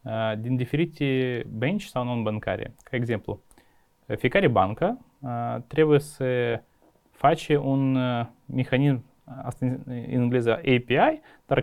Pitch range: 120-145 Hz